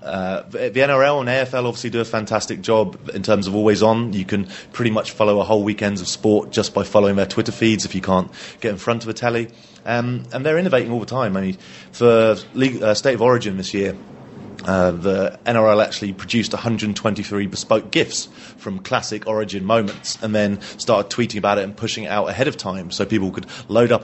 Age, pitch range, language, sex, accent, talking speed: 30-49, 100-120 Hz, English, male, British, 215 wpm